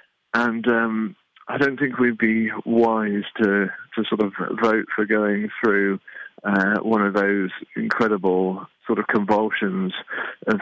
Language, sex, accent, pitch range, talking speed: English, male, British, 105-120 Hz, 140 wpm